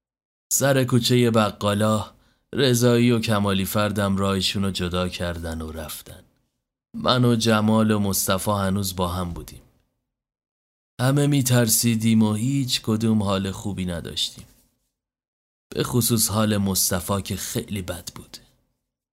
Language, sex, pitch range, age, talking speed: Persian, male, 95-120 Hz, 30-49, 120 wpm